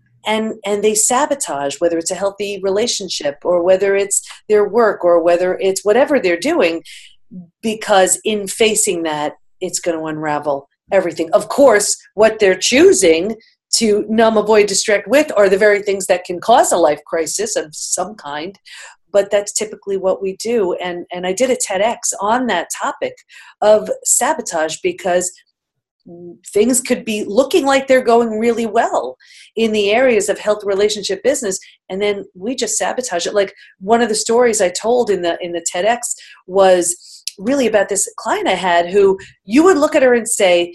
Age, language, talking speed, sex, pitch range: 40-59, English, 175 wpm, female, 180-230 Hz